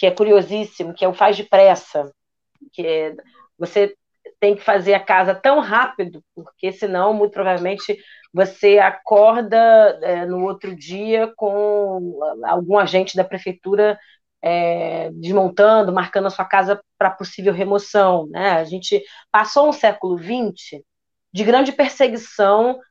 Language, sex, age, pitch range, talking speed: Portuguese, female, 30-49, 180-220 Hz, 130 wpm